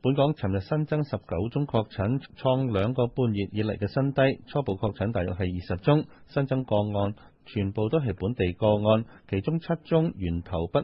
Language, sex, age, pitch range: Chinese, male, 30-49, 100-135 Hz